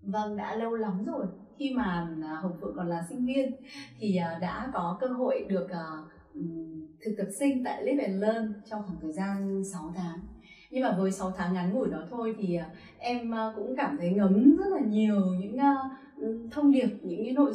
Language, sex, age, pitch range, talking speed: Vietnamese, female, 20-39, 185-255 Hz, 190 wpm